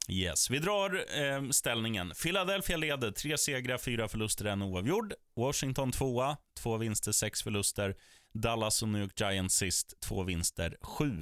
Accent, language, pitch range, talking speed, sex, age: native, Swedish, 100-140 Hz, 155 wpm, male, 30-49